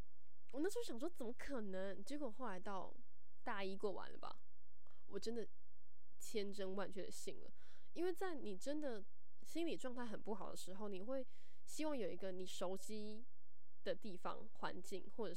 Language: Chinese